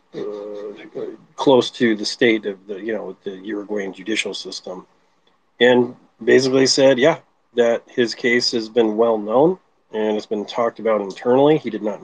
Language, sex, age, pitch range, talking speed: English, male, 40-59, 110-125 Hz, 165 wpm